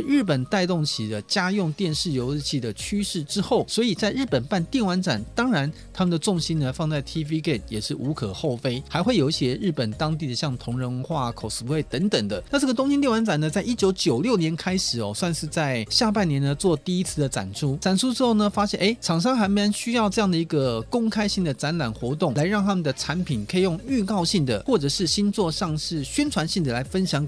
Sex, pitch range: male, 135-195 Hz